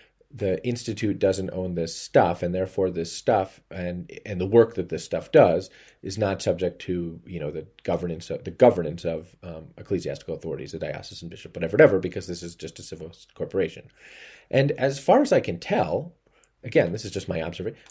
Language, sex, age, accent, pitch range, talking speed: English, male, 30-49, American, 85-100 Hz, 195 wpm